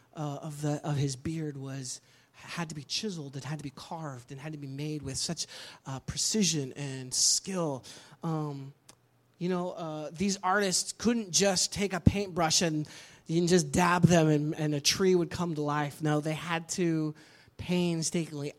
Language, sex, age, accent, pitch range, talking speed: English, male, 30-49, American, 140-175 Hz, 185 wpm